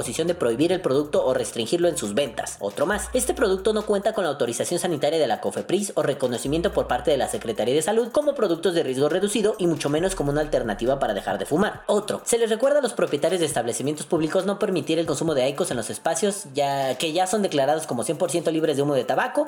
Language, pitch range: Spanish, 155-215 Hz